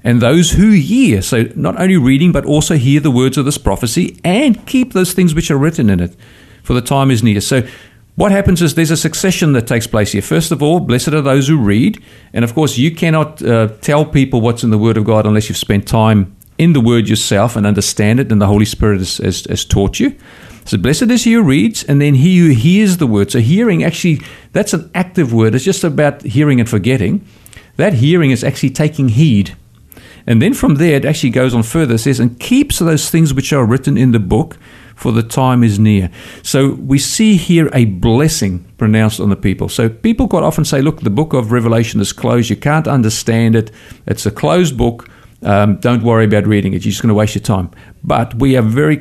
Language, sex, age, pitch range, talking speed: English, male, 50-69, 110-155 Hz, 230 wpm